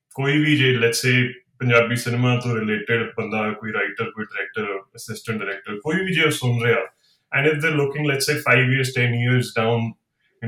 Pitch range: 125-155 Hz